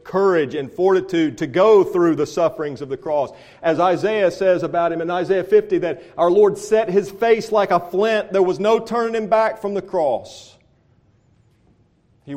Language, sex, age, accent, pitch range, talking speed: English, male, 40-59, American, 130-165 Hz, 185 wpm